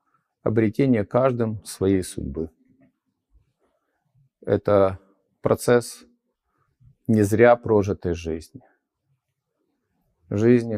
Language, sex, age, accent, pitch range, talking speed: Ukrainian, male, 50-69, native, 100-130 Hz, 60 wpm